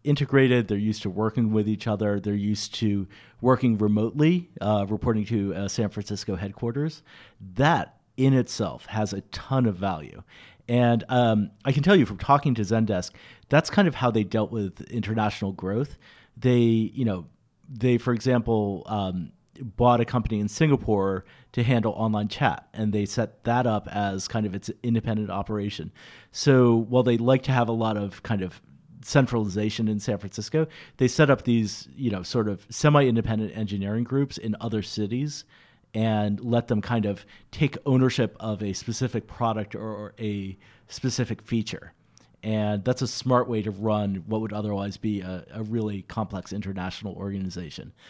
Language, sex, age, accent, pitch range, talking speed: English, male, 40-59, American, 105-125 Hz, 170 wpm